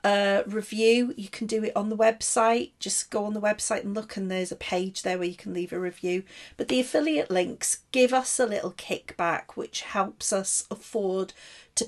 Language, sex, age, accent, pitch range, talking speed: English, female, 40-59, British, 195-245 Hz, 205 wpm